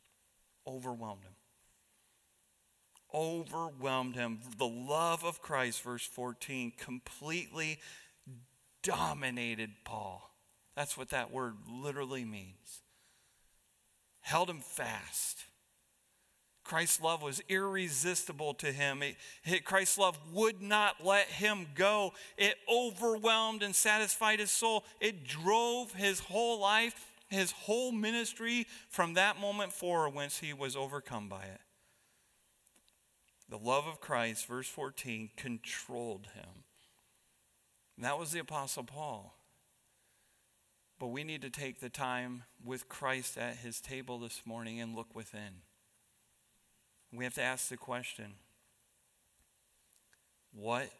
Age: 40-59